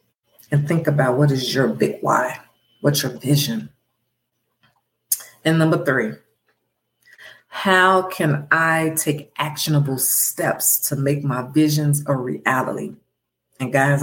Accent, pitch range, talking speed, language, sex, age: American, 135-160 Hz, 120 wpm, English, female, 40-59